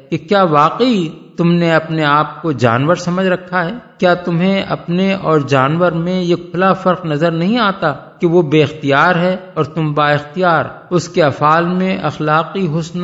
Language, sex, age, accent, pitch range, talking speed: English, male, 50-69, Indian, 135-175 Hz, 180 wpm